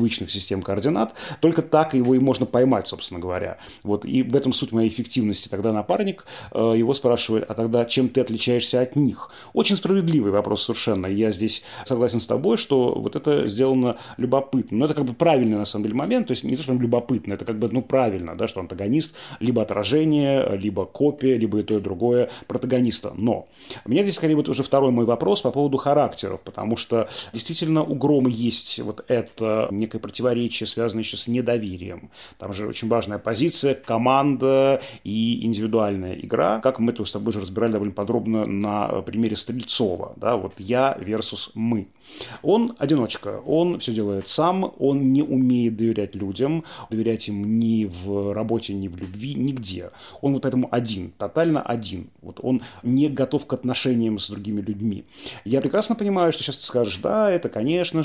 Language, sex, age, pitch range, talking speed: Russian, male, 30-49, 105-135 Hz, 180 wpm